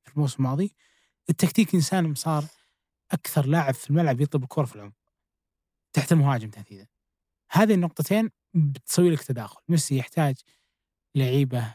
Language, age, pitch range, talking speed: Arabic, 20-39, 130-165 Hz, 130 wpm